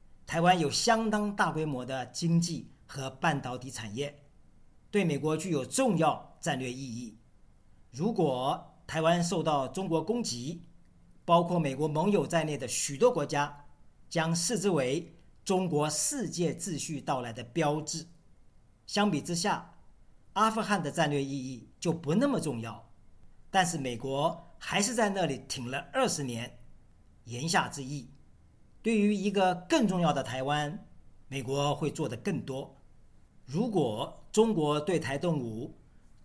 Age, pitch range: 50-69, 135-175 Hz